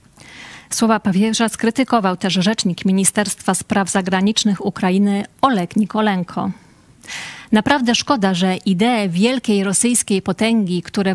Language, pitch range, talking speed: Polish, 190-225 Hz, 100 wpm